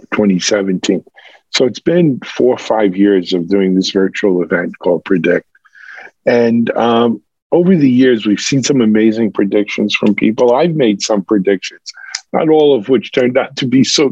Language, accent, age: English, American, 50-69